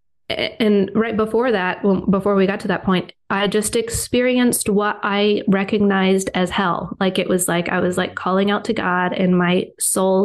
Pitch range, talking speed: 185-220 Hz, 195 wpm